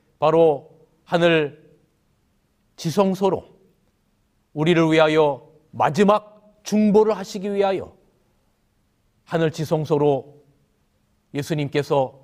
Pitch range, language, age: 150-185 Hz, Korean, 40-59